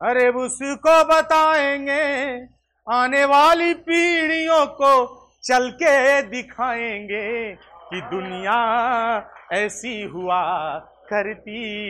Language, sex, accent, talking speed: Hindi, male, native, 75 wpm